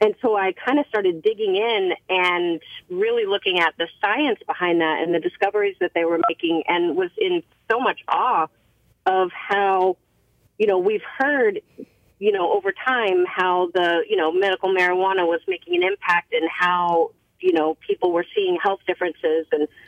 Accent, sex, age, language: American, female, 40-59, English